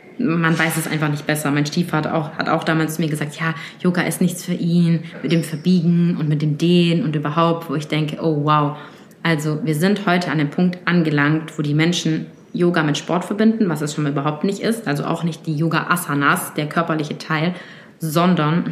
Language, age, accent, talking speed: German, 20-39, German, 210 wpm